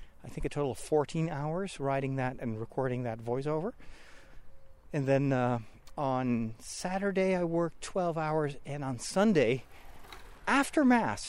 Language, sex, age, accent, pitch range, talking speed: English, male, 40-59, American, 115-165 Hz, 145 wpm